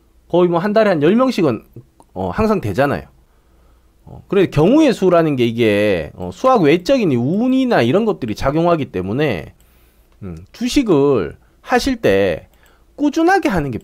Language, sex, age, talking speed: English, male, 40-59, 125 wpm